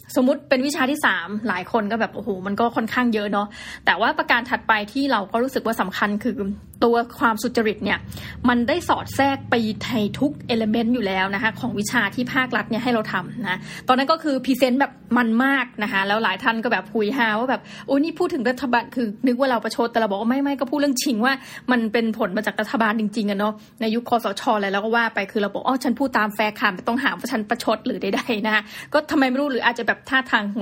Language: Thai